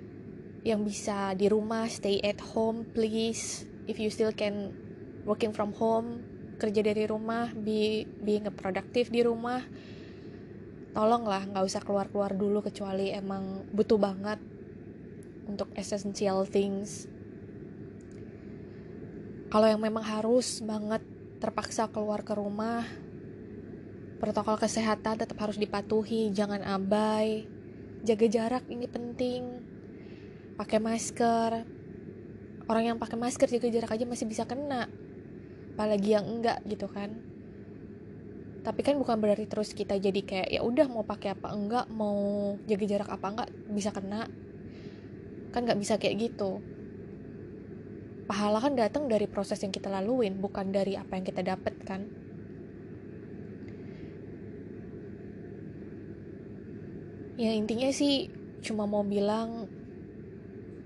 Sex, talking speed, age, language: female, 115 wpm, 20-39, Indonesian